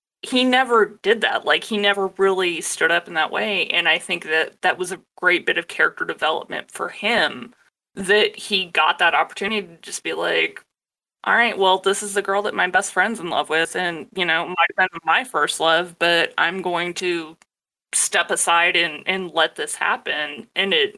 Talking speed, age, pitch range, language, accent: 205 wpm, 20-39, 170-215 Hz, English, American